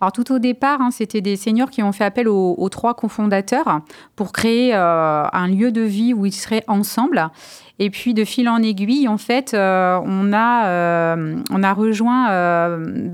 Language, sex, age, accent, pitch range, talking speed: French, female, 30-49, French, 195-235 Hz, 195 wpm